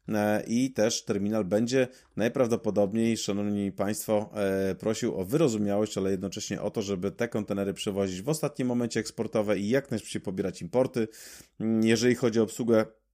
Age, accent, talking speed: 30-49, native, 140 wpm